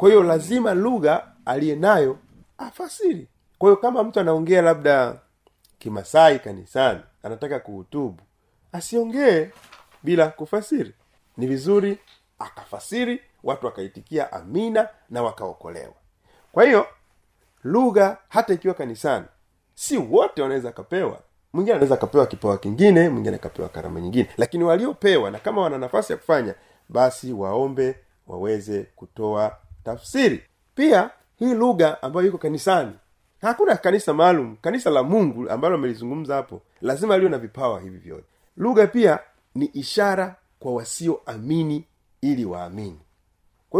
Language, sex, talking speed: Swahili, male, 120 wpm